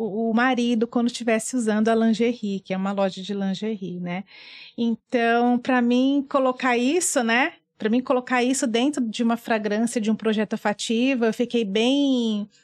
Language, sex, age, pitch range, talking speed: Portuguese, female, 30-49, 215-265 Hz, 165 wpm